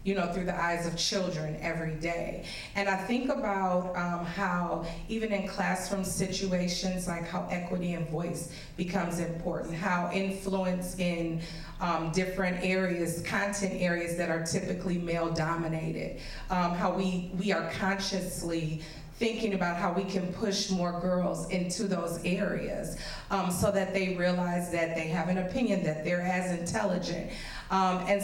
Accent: American